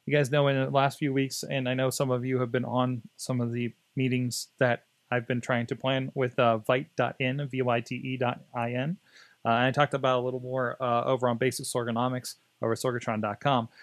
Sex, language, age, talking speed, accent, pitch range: male, English, 30-49, 205 wpm, American, 125-155 Hz